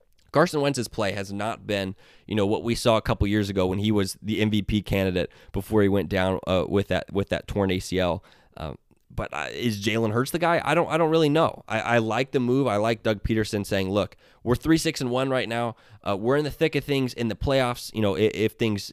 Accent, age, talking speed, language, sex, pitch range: American, 20-39, 250 wpm, English, male, 100-120 Hz